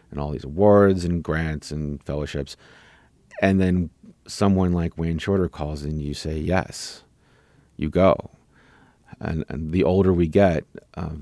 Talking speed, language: 150 wpm, English